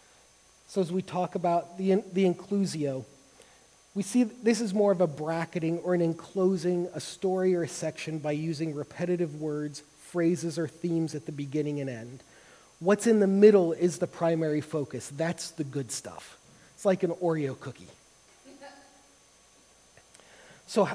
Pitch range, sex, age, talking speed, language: 155-190 Hz, male, 30-49, 155 wpm, English